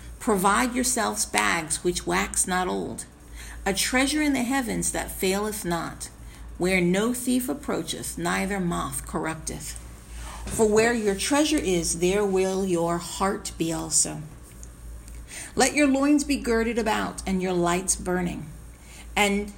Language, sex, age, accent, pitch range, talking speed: English, female, 50-69, American, 170-235 Hz, 135 wpm